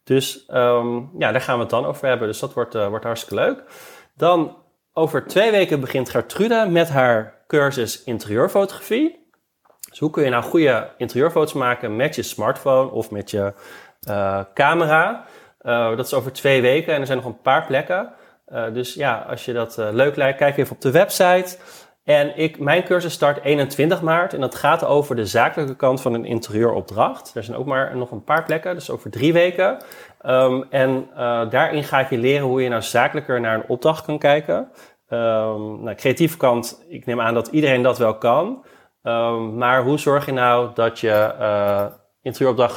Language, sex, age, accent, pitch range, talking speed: Dutch, male, 30-49, Dutch, 115-150 Hz, 190 wpm